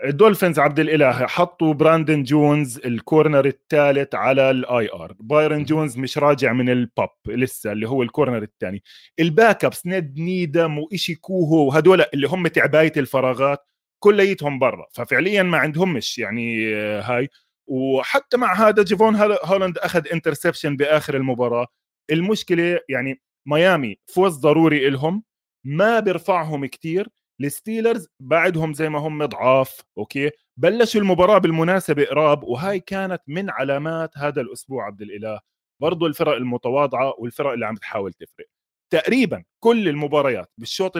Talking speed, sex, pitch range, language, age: 130 wpm, male, 135-175 Hz, Arabic, 20-39